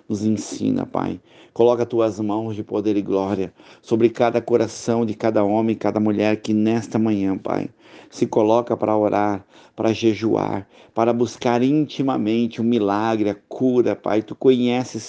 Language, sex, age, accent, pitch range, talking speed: Portuguese, male, 50-69, Brazilian, 100-115 Hz, 160 wpm